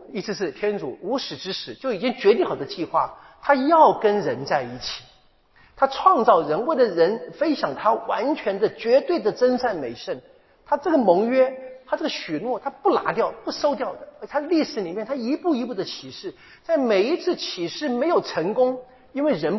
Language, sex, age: Chinese, male, 40-59